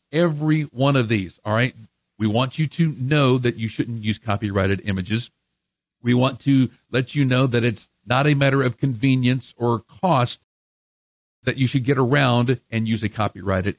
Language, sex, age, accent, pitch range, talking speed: English, male, 50-69, American, 110-140 Hz, 180 wpm